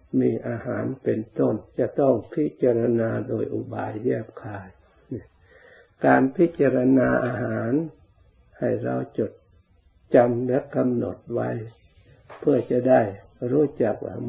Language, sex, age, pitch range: Thai, male, 60-79, 90-125 Hz